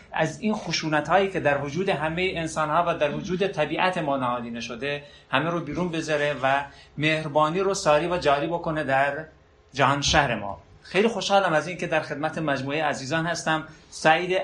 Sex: male